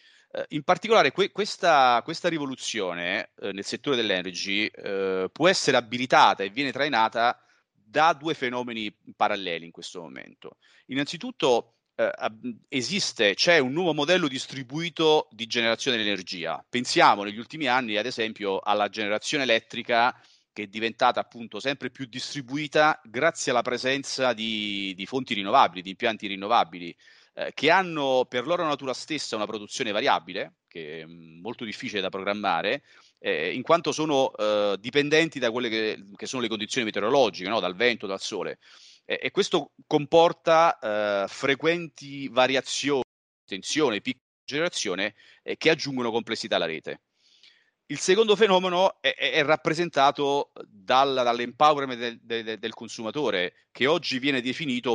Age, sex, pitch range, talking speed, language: 30-49, male, 110-155 Hz, 130 wpm, Italian